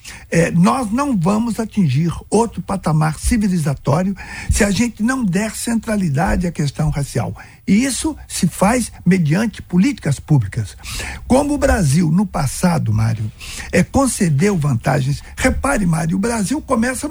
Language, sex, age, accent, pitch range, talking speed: Portuguese, male, 60-79, Brazilian, 155-230 Hz, 135 wpm